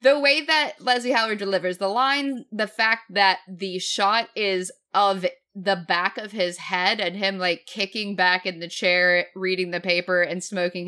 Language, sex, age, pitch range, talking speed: English, female, 20-39, 185-265 Hz, 180 wpm